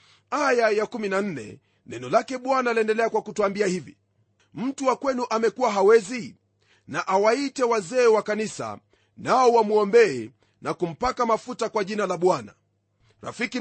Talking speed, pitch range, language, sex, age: 130 wpm, 200-240 Hz, Swahili, male, 40-59